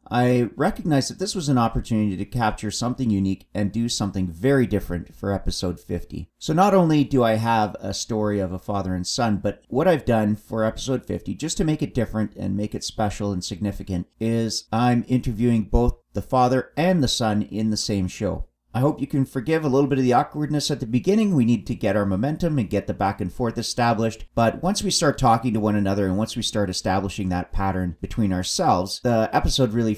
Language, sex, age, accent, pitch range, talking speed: English, male, 40-59, American, 100-125 Hz, 220 wpm